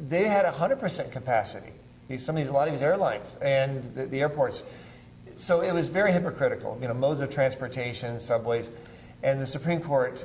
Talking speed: 180 wpm